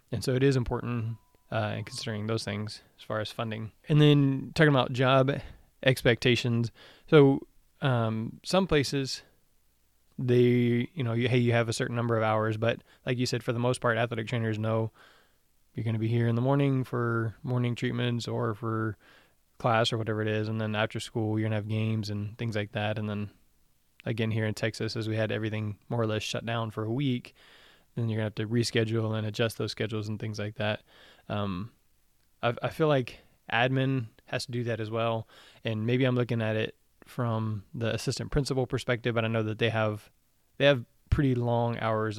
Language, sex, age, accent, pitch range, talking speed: English, male, 20-39, American, 110-125 Hz, 205 wpm